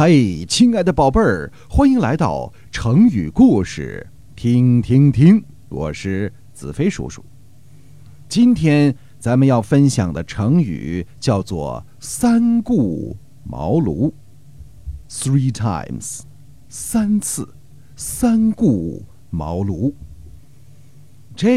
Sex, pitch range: male, 115-150 Hz